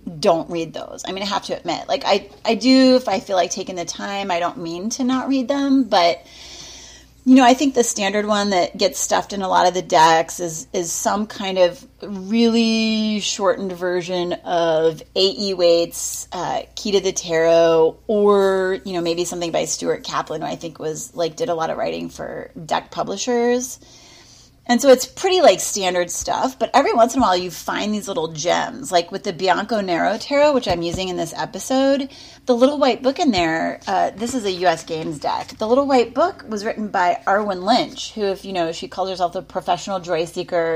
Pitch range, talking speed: 175-240 Hz, 210 wpm